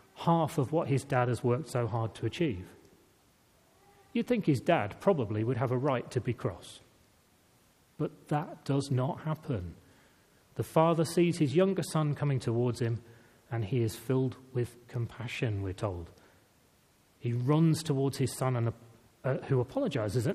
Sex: male